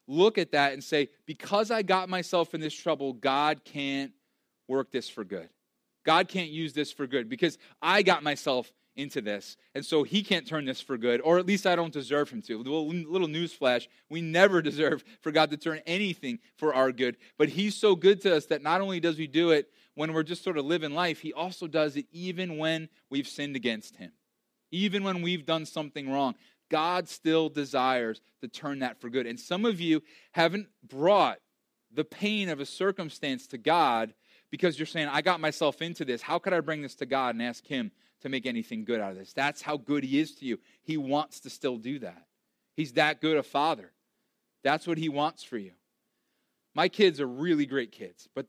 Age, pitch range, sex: 30-49, 135-175 Hz, male